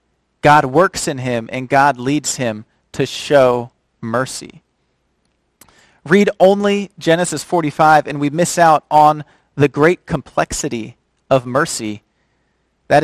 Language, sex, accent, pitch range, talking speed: English, male, American, 130-160 Hz, 120 wpm